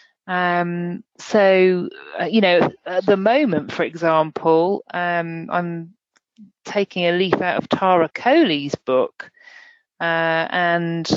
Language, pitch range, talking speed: English, 170-210 Hz, 120 wpm